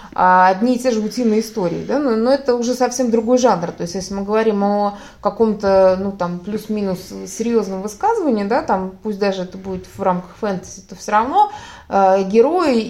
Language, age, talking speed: Russian, 20-39, 180 wpm